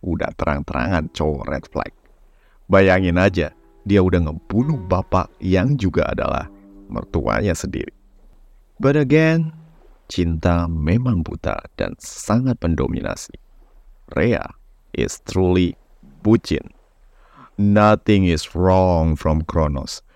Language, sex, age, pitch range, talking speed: Indonesian, male, 30-49, 85-120 Hz, 100 wpm